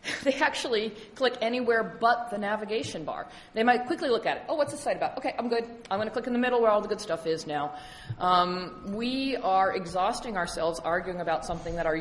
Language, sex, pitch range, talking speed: English, female, 170-240 Hz, 230 wpm